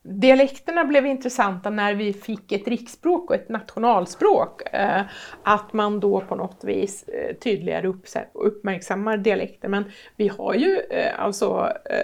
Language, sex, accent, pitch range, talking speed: Swedish, female, native, 200-255 Hz, 125 wpm